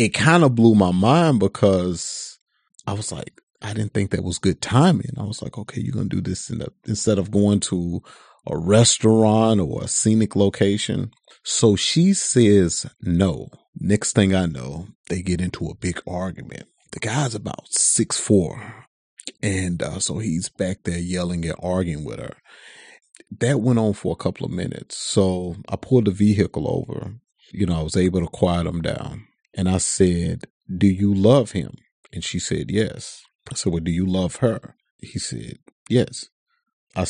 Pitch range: 90-105 Hz